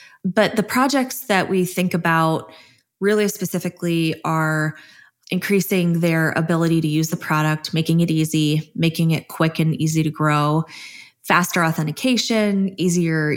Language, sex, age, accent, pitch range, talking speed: English, female, 20-39, American, 160-190 Hz, 135 wpm